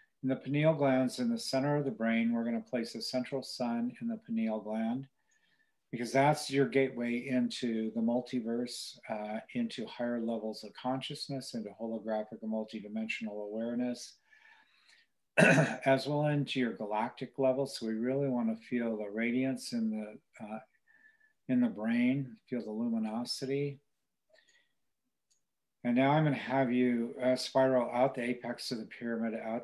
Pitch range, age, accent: 115-135 Hz, 40-59, American